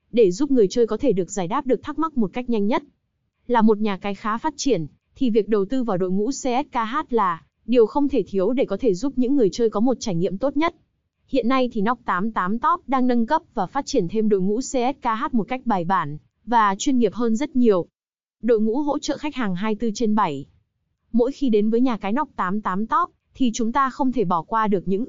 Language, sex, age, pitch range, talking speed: Vietnamese, female, 20-39, 205-260 Hz, 245 wpm